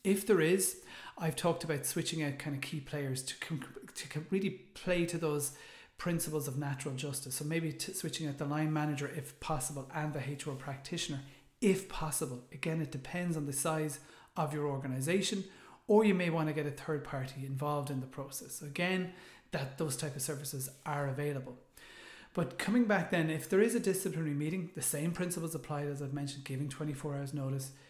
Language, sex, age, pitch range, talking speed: English, male, 30-49, 140-160 Hz, 190 wpm